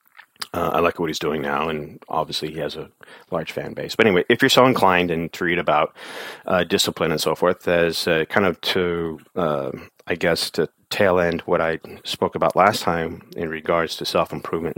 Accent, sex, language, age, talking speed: American, male, English, 30-49, 205 wpm